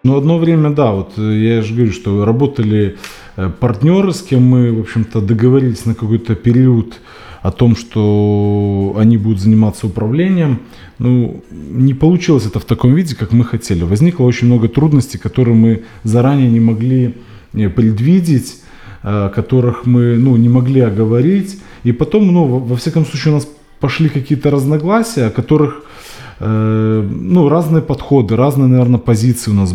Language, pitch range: Russian, 110-140 Hz